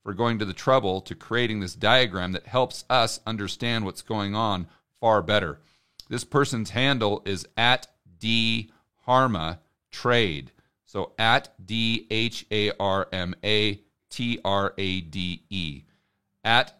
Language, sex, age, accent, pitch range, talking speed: English, male, 40-59, American, 95-125 Hz, 140 wpm